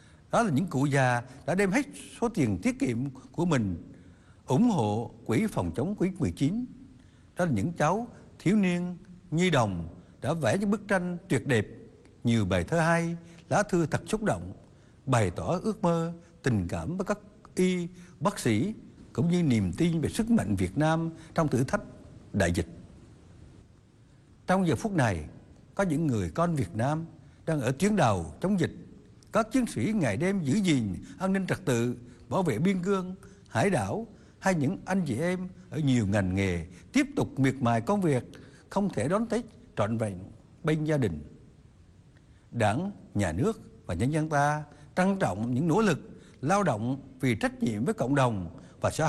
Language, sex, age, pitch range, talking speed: Vietnamese, male, 60-79, 115-185 Hz, 180 wpm